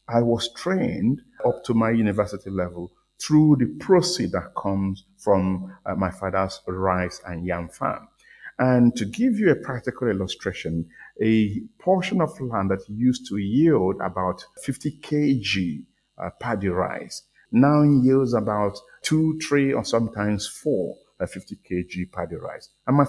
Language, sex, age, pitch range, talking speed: English, male, 50-69, 95-130 Hz, 150 wpm